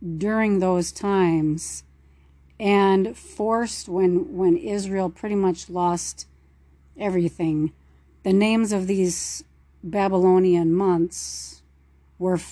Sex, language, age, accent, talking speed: female, English, 40-59, American, 90 wpm